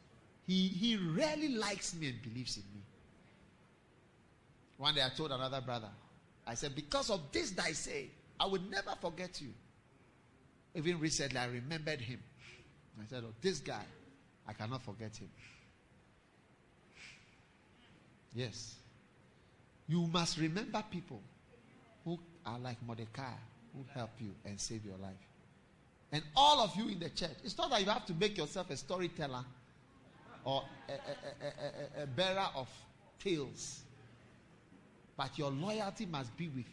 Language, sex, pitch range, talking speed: English, male, 120-170 Hz, 140 wpm